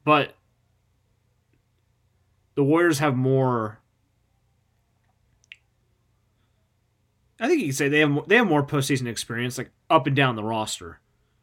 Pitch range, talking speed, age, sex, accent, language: 110-140 Hz, 120 wpm, 20-39, male, American, English